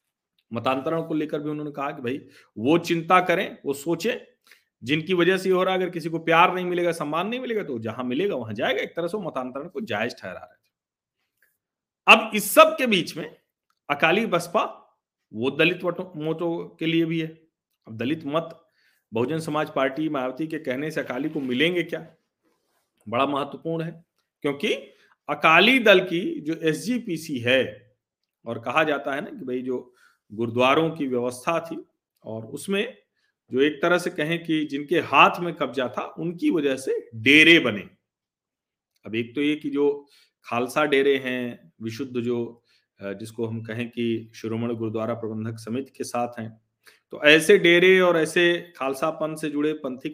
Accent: native